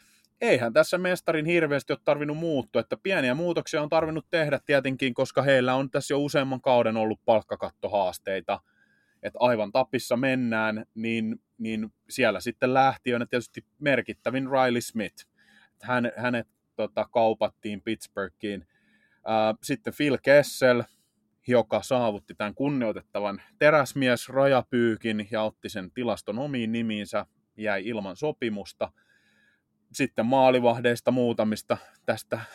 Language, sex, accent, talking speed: Finnish, male, native, 115 wpm